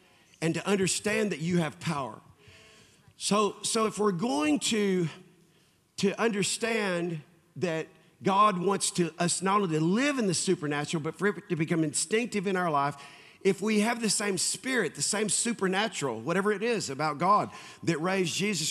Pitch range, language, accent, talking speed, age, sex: 165-210 Hz, English, American, 170 wpm, 50-69, male